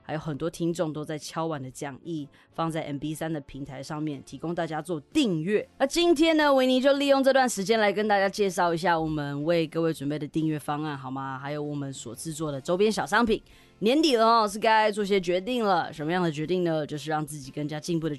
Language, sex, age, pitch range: Chinese, female, 20-39, 150-190 Hz